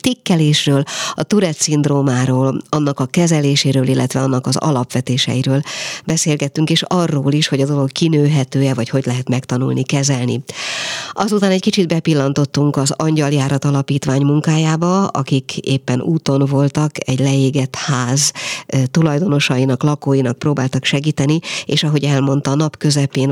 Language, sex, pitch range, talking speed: Hungarian, female, 130-155 Hz, 125 wpm